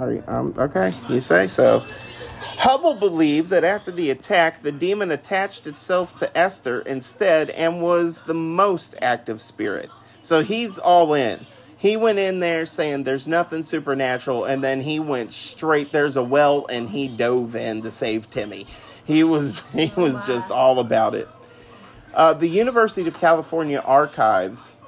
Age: 30-49